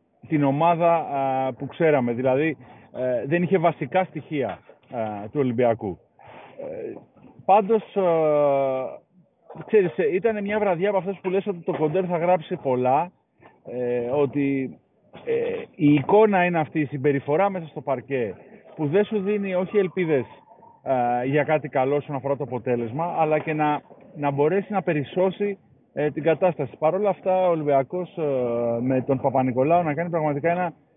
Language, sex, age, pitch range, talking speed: Greek, male, 40-59, 140-185 Hz, 150 wpm